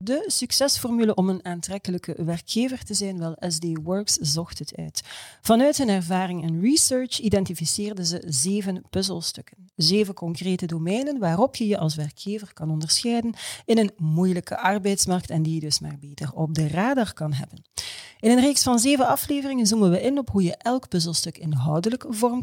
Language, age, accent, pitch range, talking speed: Dutch, 40-59, Dutch, 160-215 Hz, 170 wpm